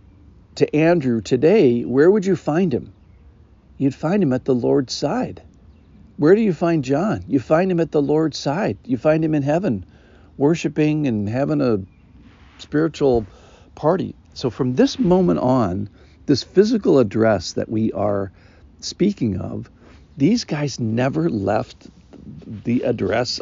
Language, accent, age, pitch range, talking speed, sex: English, American, 60-79, 100-140 Hz, 145 wpm, male